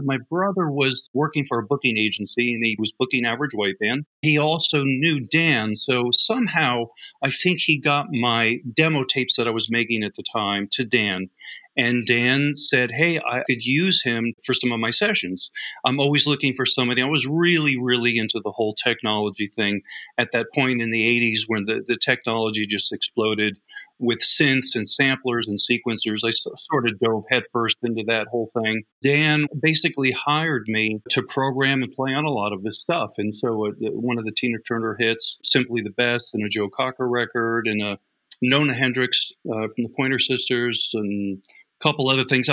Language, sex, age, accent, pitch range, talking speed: English, male, 40-59, American, 115-140 Hz, 195 wpm